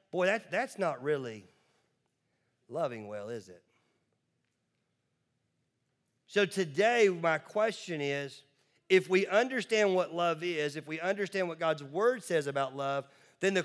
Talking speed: 135 wpm